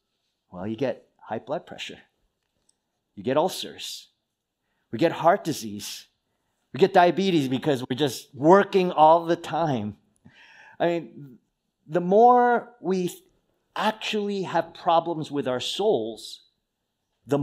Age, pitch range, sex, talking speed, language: 40-59, 115-175 Hz, male, 120 wpm, English